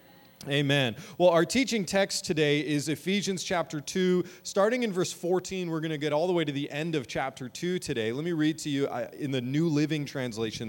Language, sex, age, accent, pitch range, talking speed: English, male, 30-49, American, 135-195 Hz, 215 wpm